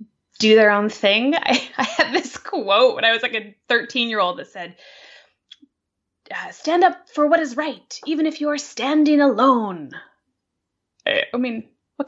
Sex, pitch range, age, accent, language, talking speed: female, 195-265 Hz, 20-39, American, English, 165 wpm